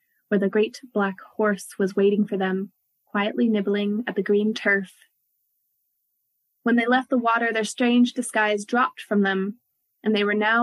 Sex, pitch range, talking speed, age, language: female, 200-245 Hz, 170 wpm, 20-39, English